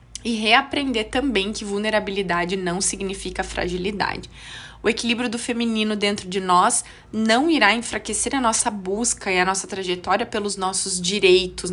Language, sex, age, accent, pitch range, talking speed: Portuguese, female, 20-39, Brazilian, 190-240 Hz, 145 wpm